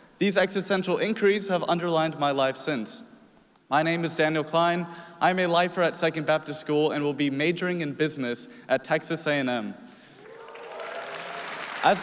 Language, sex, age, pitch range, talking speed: English, male, 20-39, 145-185 Hz, 150 wpm